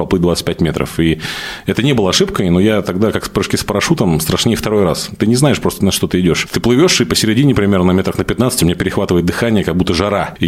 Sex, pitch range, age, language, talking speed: male, 85-105 Hz, 30-49, Russian, 245 wpm